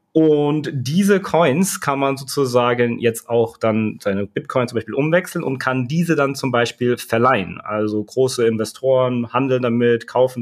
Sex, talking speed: male, 155 wpm